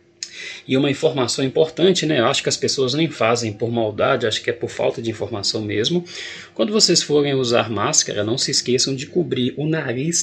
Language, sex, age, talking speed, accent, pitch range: Portuguese, male, 20-39, 195 wpm, Brazilian, 125-175 Hz